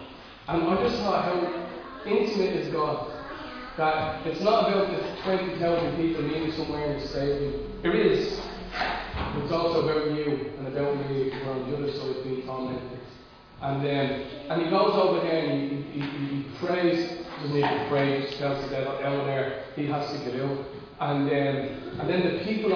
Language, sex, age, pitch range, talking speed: English, male, 30-49, 140-175 Hz, 180 wpm